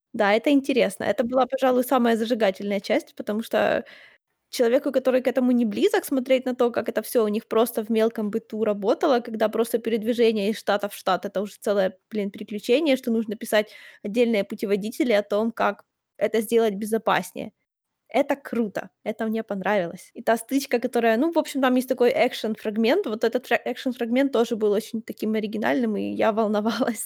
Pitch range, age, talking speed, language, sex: 220-270 Hz, 20-39, 180 wpm, Ukrainian, female